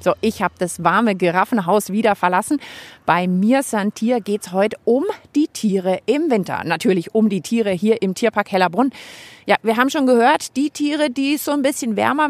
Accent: German